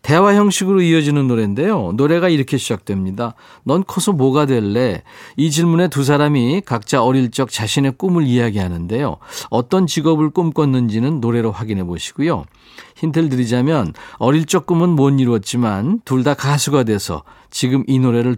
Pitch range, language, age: 110-160 Hz, Korean, 40-59